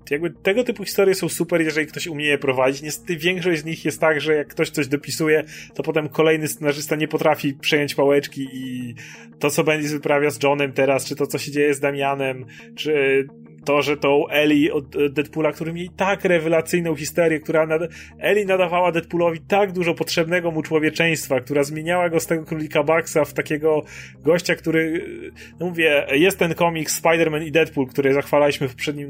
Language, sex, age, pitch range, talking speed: Polish, male, 30-49, 140-165 Hz, 185 wpm